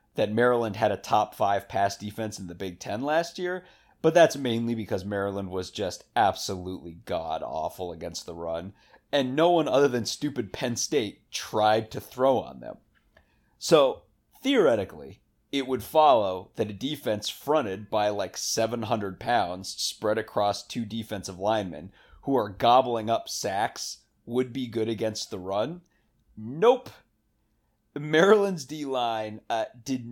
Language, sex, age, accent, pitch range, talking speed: English, male, 30-49, American, 100-130 Hz, 145 wpm